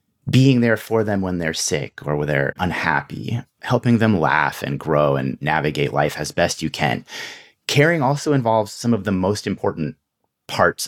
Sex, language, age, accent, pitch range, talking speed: male, English, 30-49, American, 80-120 Hz, 175 wpm